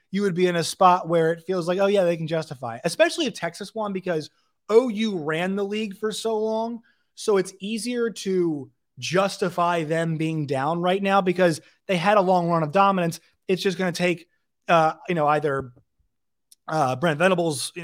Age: 30-49